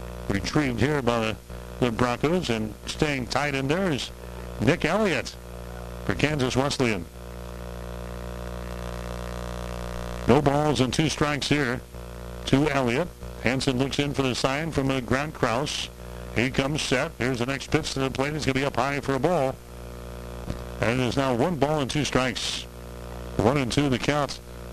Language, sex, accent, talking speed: English, male, American, 160 wpm